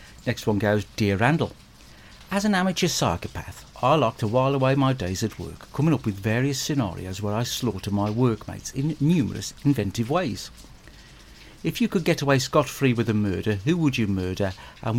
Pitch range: 100-130 Hz